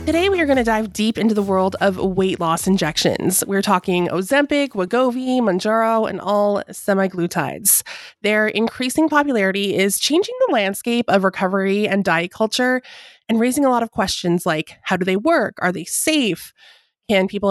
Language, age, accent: English, 20-39, American